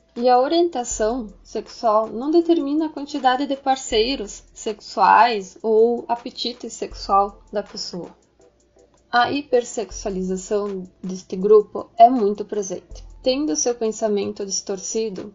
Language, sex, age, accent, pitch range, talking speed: Portuguese, female, 10-29, Brazilian, 205-250 Hz, 105 wpm